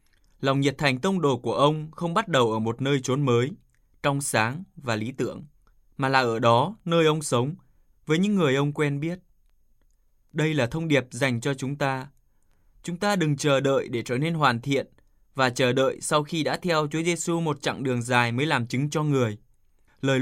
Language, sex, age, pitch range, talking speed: Vietnamese, male, 20-39, 120-155 Hz, 210 wpm